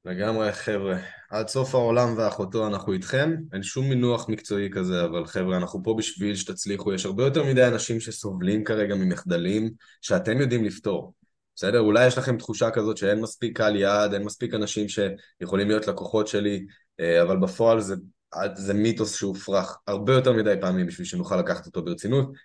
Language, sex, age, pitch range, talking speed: Hebrew, male, 20-39, 100-130 Hz, 165 wpm